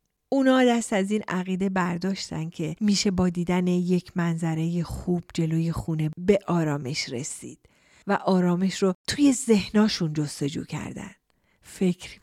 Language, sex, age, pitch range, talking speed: Persian, female, 40-59, 170-225 Hz, 130 wpm